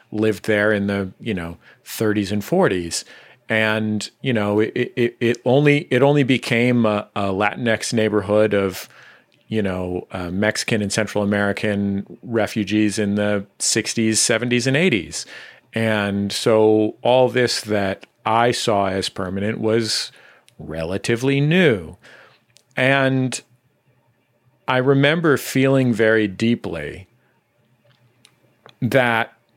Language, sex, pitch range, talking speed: English, male, 105-125 Hz, 115 wpm